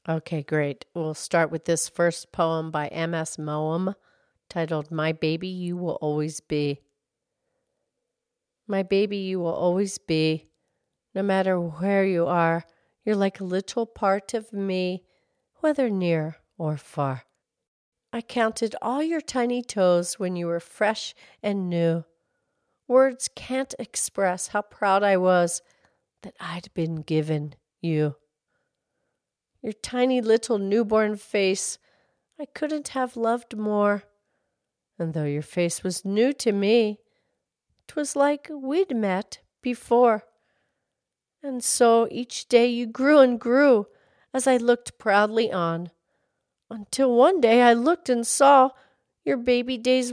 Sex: female